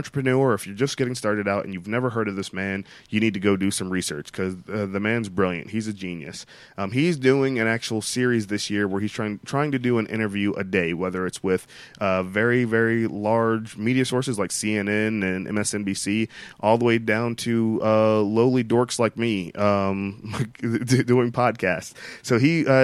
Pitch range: 105-130 Hz